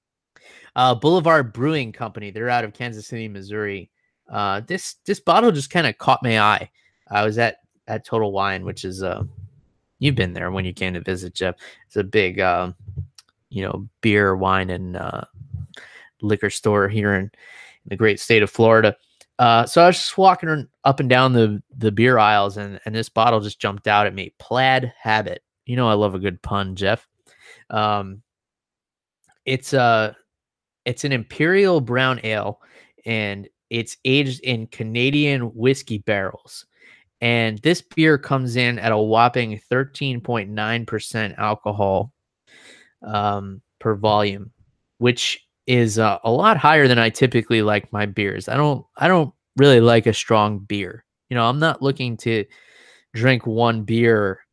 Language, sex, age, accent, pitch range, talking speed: English, male, 20-39, American, 100-125 Hz, 165 wpm